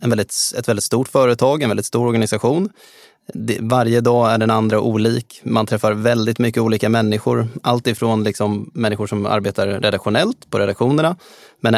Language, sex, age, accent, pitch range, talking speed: Swedish, male, 20-39, native, 105-115 Hz, 170 wpm